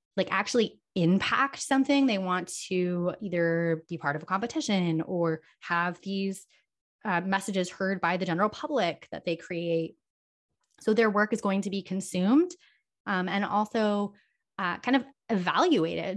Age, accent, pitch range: 20-39, American, 170-215 Hz